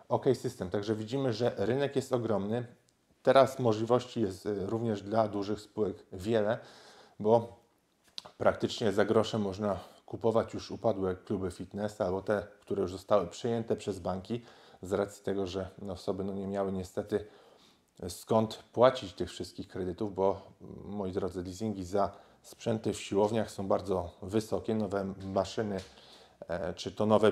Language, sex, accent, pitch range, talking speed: Polish, male, native, 95-115 Hz, 140 wpm